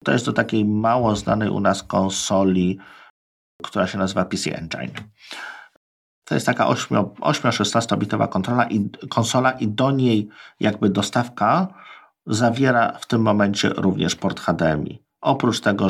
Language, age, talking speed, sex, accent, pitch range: Polish, 50-69, 130 wpm, male, native, 95-115 Hz